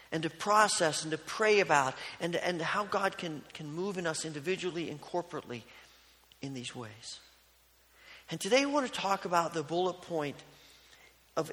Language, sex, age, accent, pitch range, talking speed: English, male, 40-59, American, 140-195 Hz, 170 wpm